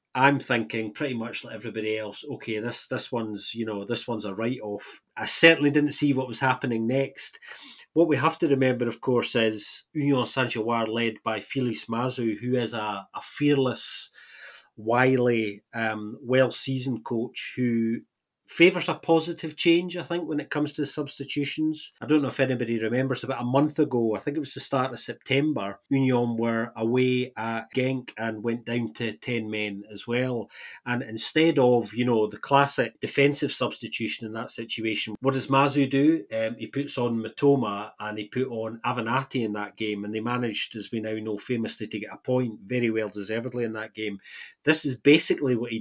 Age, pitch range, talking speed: 30-49, 110-135 Hz, 185 wpm